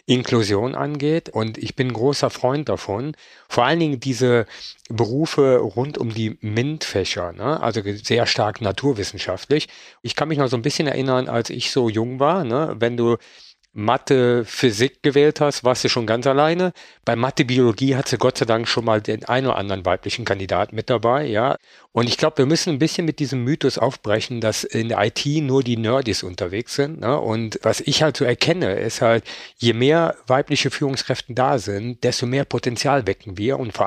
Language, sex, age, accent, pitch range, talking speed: German, male, 50-69, German, 115-145 Hz, 195 wpm